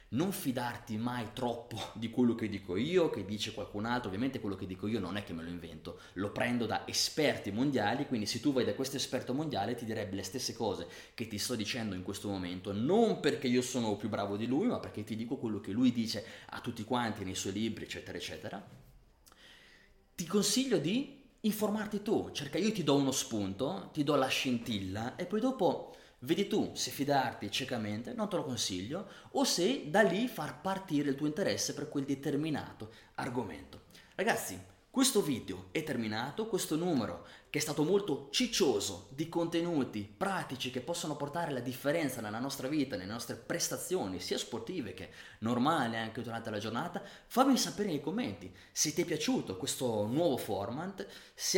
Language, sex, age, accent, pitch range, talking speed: Italian, male, 20-39, native, 110-170 Hz, 185 wpm